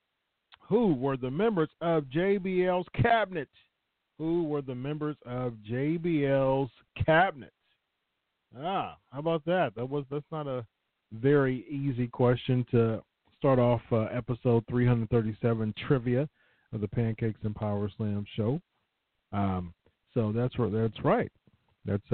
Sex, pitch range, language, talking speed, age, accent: male, 110-145 Hz, English, 125 wpm, 40-59, American